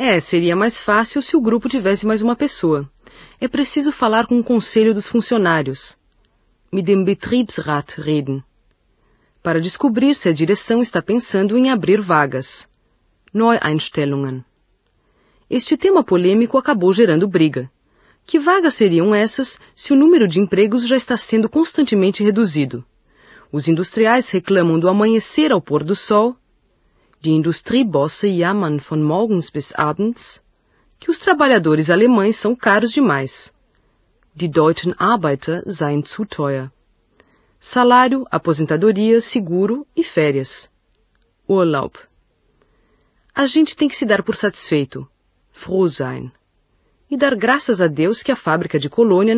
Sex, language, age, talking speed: female, Portuguese, 40-59, 130 wpm